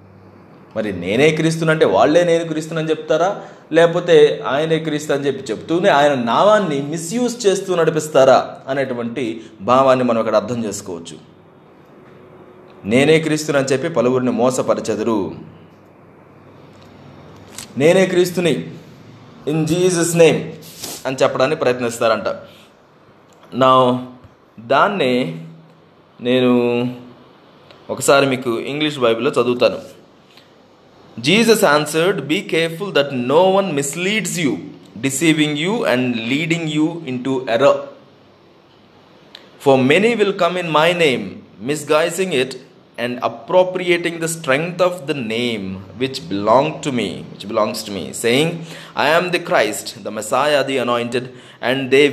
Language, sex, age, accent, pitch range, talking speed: Telugu, male, 20-39, native, 125-175 Hz, 110 wpm